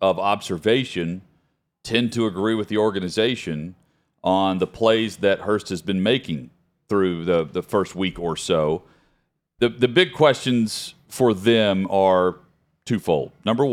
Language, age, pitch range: English, 40-59, 90-110 Hz